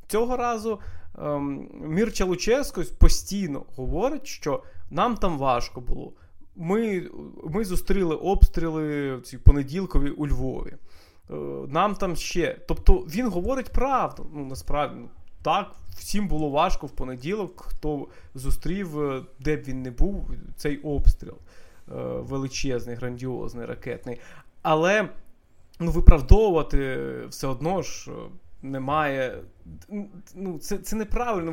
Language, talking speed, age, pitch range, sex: Russian, 110 wpm, 20-39, 135-195 Hz, male